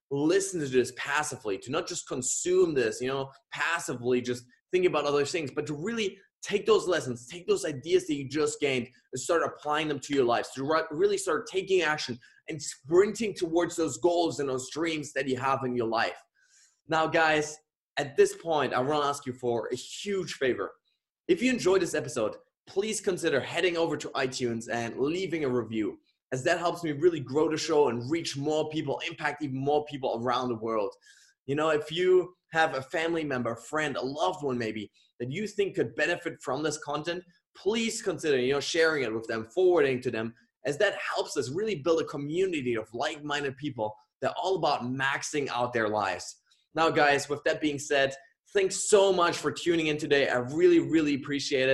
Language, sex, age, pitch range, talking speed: English, male, 20-39, 135-185 Hz, 200 wpm